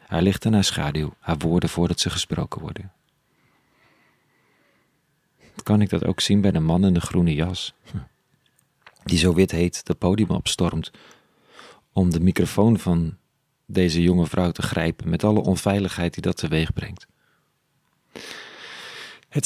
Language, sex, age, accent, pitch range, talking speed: Dutch, male, 40-59, Dutch, 90-105 Hz, 145 wpm